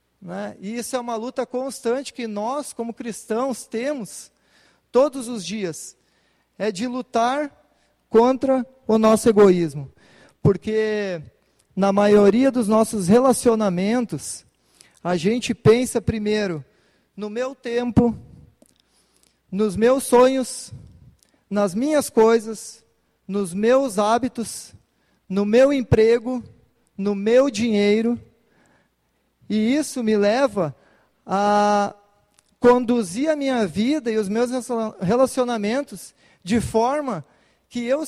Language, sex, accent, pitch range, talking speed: Portuguese, male, Brazilian, 210-255 Hz, 105 wpm